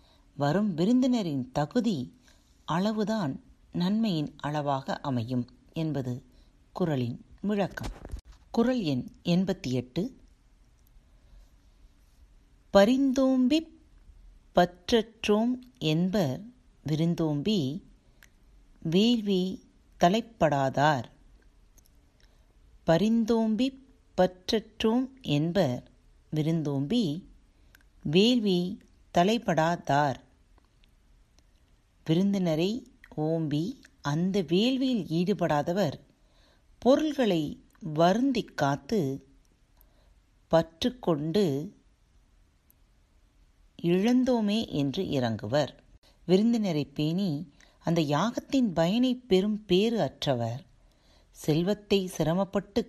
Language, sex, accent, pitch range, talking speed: Tamil, female, native, 140-215 Hz, 55 wpm